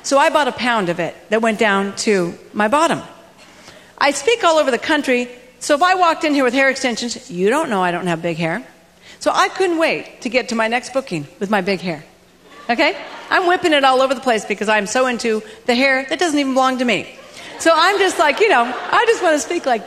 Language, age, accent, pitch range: English, 40-59, American, 245-340 Hz